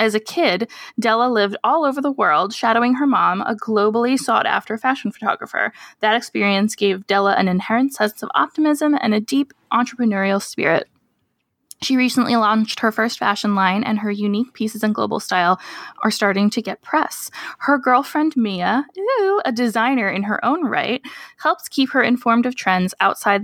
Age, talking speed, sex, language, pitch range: 10-29, 170 wpm, female, English, 205-260 Hz